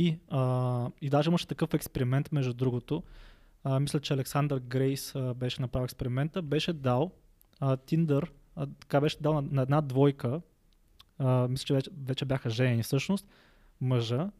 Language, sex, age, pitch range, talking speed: Bulgarian, male, 20-39, 130-155 Hz, 160 wpm